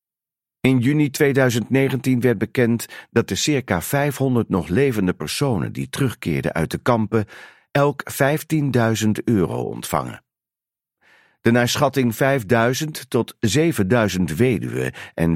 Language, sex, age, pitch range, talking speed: Dutch, male, 50-69, 105-140 Hz, 115 wpm